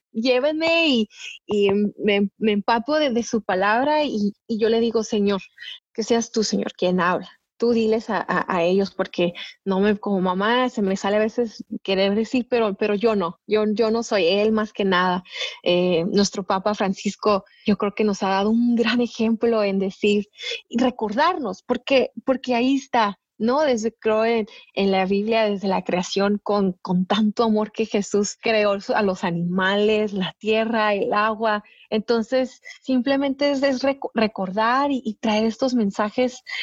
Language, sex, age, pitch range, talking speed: English, female, 30-49, 205-245 Hz, 175 wpm